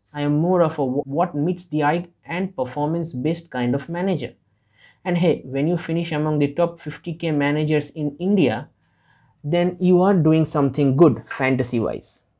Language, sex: English, male